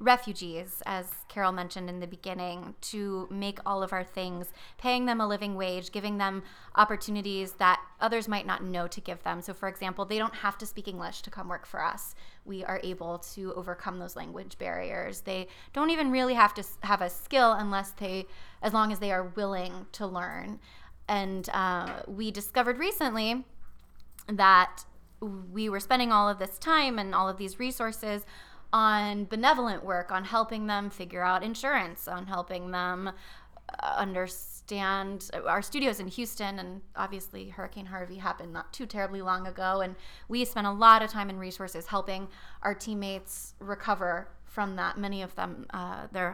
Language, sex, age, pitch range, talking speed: English, female, 20-39, 185-215 Hz, 175 wpm